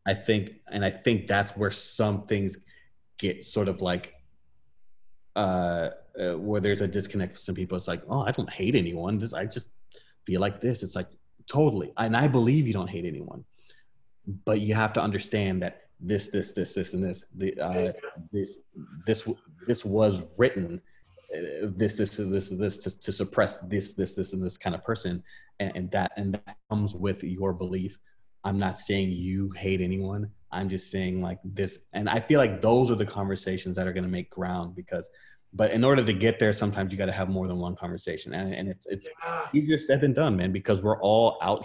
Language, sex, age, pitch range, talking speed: English, male, 30-49, 95-105 Hz, 200 wpm